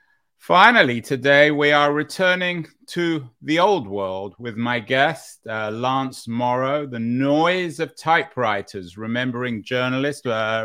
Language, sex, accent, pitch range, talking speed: English, male, British, 120-150 Hz, 125 wpm